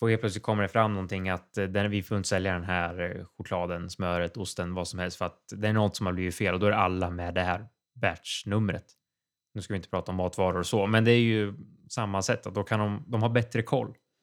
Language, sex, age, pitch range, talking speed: Swedish, male, 20-39, 90-115 Hz, 255 wpm